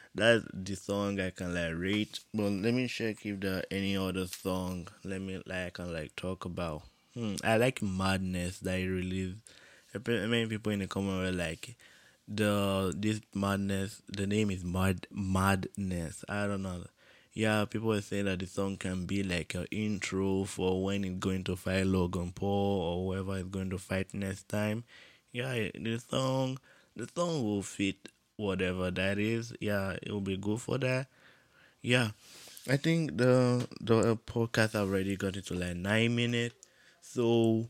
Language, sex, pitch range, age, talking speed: English, male, 95-110 Hz, 20-39, 170 wpm